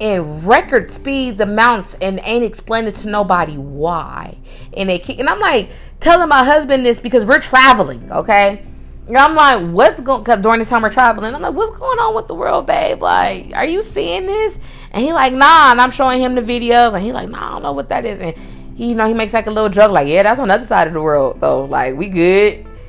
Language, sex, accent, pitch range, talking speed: English, female, American, 175-245 Hz, 245 wpm